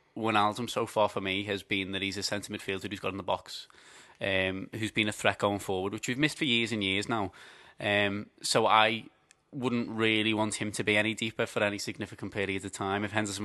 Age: 20-39